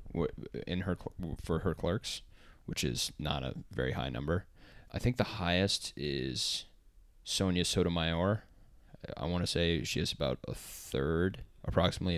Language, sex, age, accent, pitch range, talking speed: English, male, 20-39, American, 80-95 Hz, 145 wpm